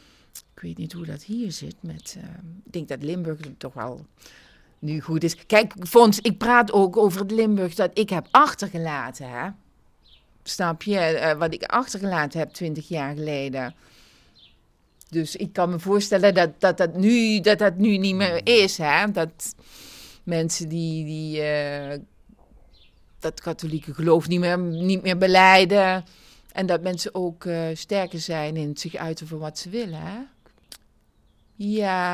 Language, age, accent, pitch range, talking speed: Dutch, 40-59, Dutch, 160-215 Hz, 150 wpm